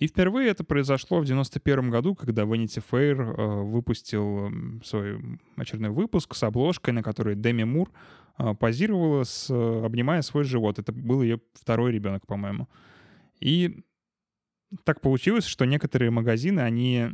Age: 20-39